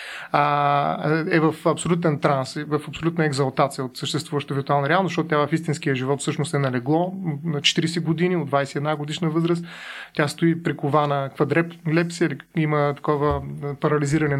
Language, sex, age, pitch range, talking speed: Bulgarian, male, 30-49, 145-170 Hz, 140 wpm